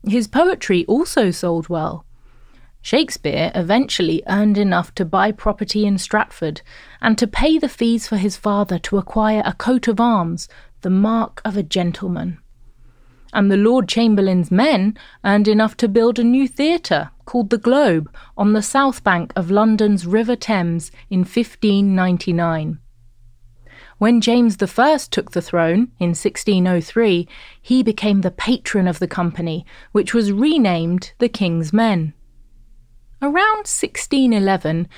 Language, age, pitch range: English, 30-49, 175-230 Hz